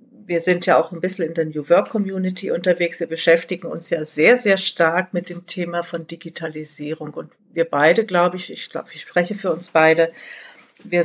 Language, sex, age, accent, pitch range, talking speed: German, female, 50-69, German, 165-215 Hz, 200 wpm